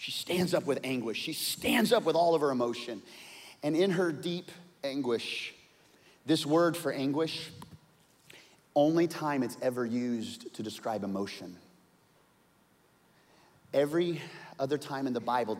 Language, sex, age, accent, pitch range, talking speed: English, male, 30-49, American, 110-145 Hz, 140 wpm